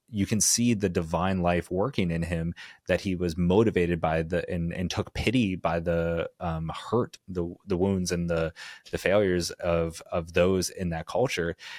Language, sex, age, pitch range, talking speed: English, male, 30-49, 85-100 Hz, 185 wpm